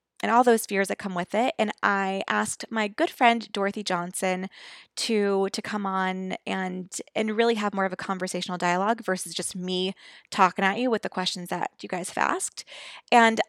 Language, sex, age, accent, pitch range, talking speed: English, female, 20-39, American, 185-225 Hz, 195 wpm